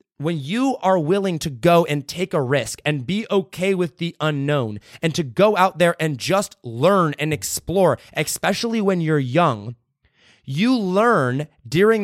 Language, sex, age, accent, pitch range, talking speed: English, male, 30-49, American, 145-190 Hz, 165 wpm